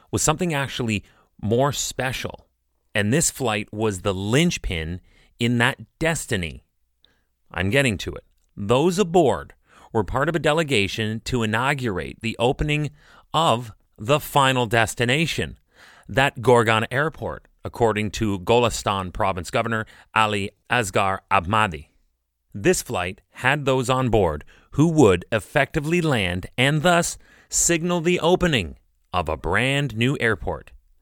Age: 30-49